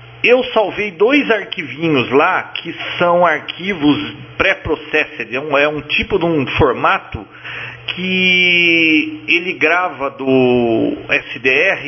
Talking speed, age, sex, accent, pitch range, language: 110 wpm, 40-59, male, Brazilian, 140-195 Hz, Portuguese